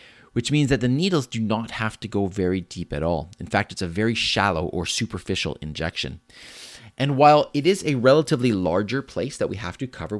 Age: 30-49